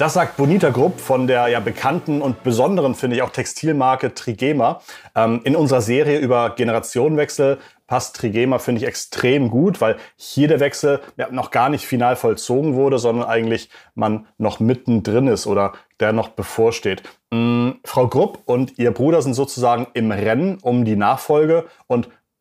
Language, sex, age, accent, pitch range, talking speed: German, male, 30-49, German, 115-140 Hz, 165 wpm